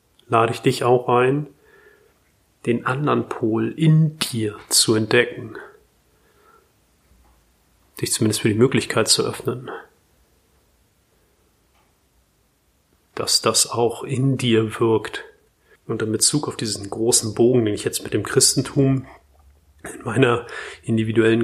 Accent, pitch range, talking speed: German, 105-125 Hz, 115 wpm